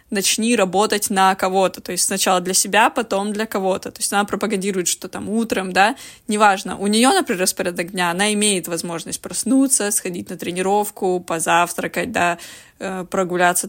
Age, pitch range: 20-39, 185-220 Hz